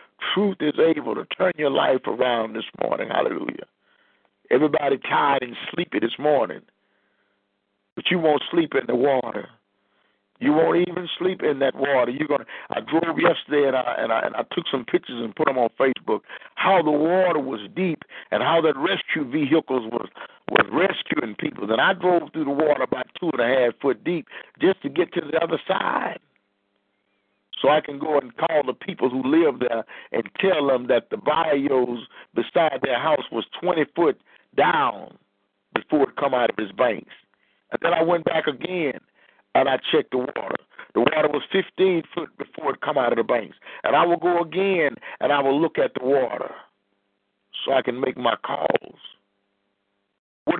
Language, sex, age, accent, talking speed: English, male, 50-69, American, 185 wpm